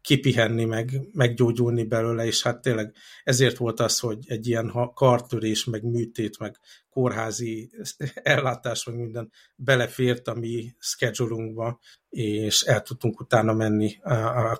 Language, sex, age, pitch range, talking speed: Hungarian, male, 50-69, 110-125 Hz, 125 wpm